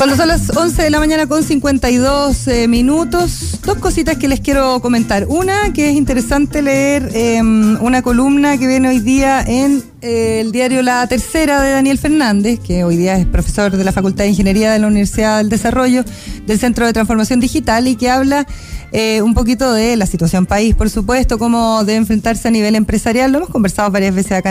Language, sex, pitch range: Spanish, female, 195-250 Hz